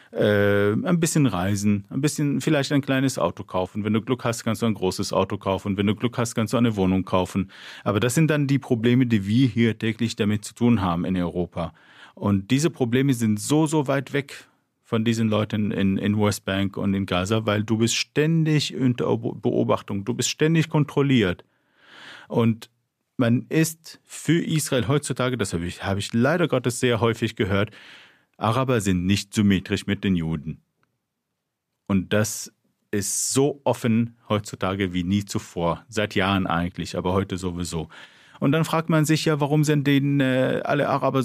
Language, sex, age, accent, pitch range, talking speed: German, male, 40-59, German, 100-140 Hz, 175 wpm